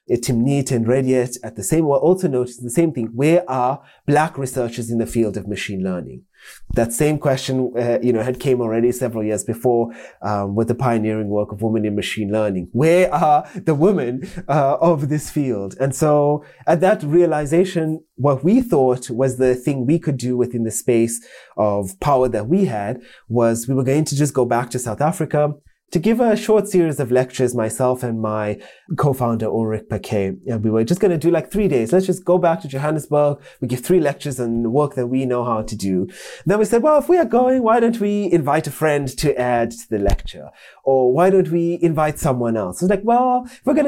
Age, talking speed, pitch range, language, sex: 20-39, 215 wpm, 115-160 Hz, English, male